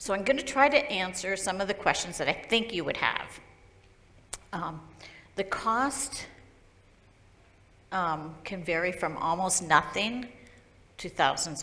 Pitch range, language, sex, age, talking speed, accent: 155-185 Hz, English, female, 50-69, 145 wpm, American